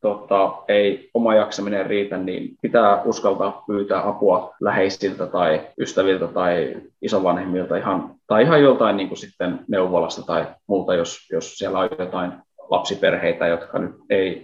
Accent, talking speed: native, 140 wpm